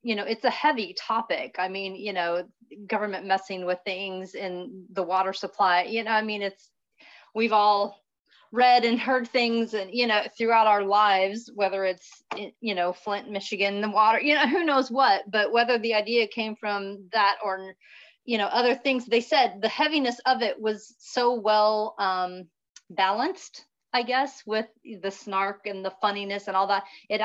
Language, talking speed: English, 185 wpm